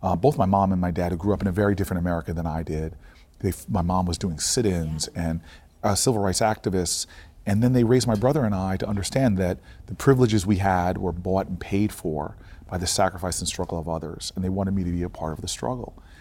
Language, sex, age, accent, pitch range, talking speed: English, male, 40-59, American, 85-105 Hz, 245 wpm